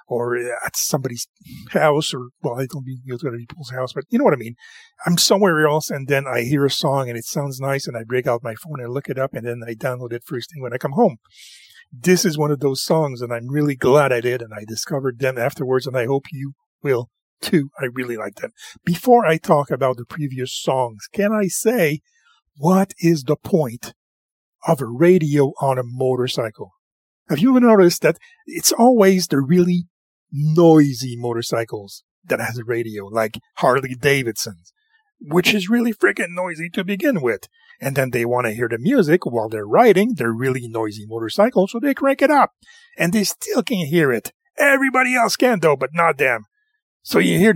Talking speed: 205 wpm